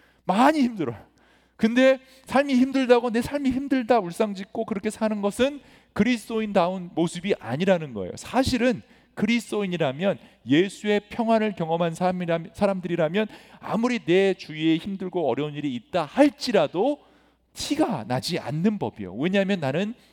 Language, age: English, 40-59